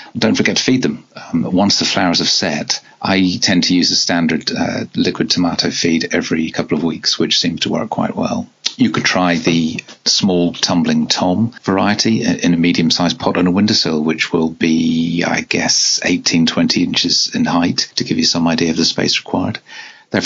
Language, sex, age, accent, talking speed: English, male, 40-59, British, 200 wpm